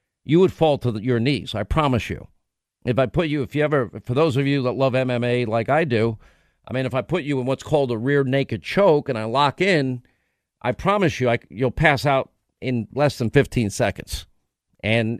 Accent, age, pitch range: American, 50-69, 125-150 Hz